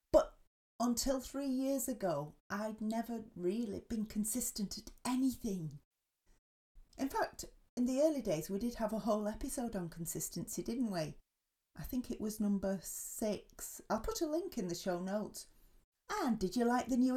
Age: 30-49